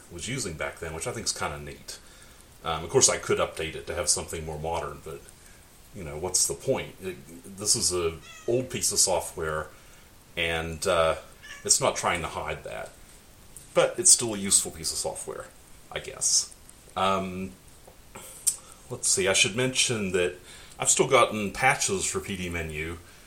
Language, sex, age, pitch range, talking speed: English, male, 30-49, 85-105 Hz, 180 wpm